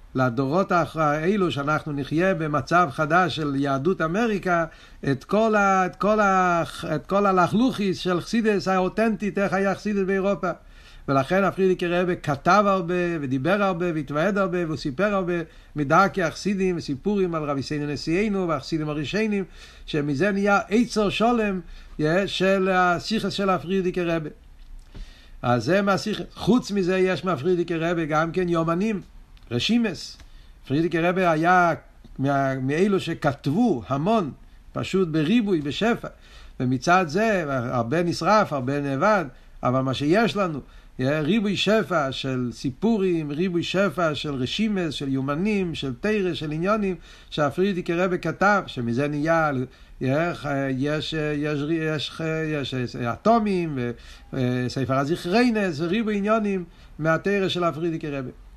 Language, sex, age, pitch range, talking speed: Hebrew, male, 60-79, 145-195 Hz, 120 wpm